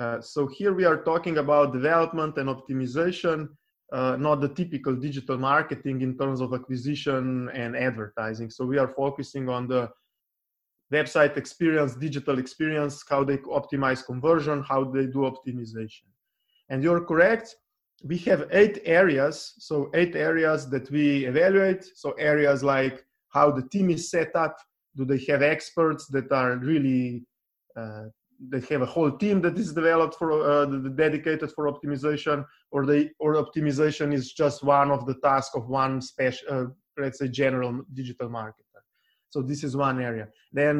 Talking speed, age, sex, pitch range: 160 wpm, 20-39, male, 130-155 Hz